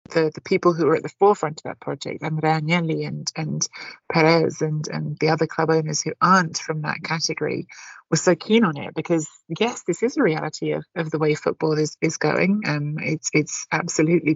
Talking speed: 215 wpm